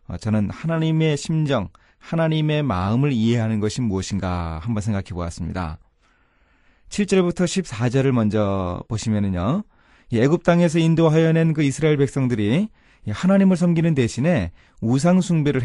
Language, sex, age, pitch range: Korean, male, 30-49, 110-165 Hz